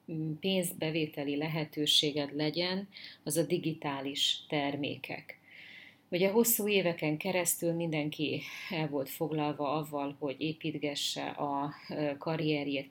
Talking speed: 95 wpm